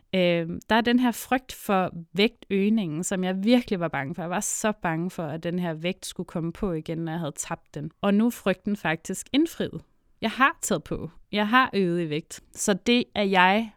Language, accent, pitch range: Danish, native, 170-210 Hz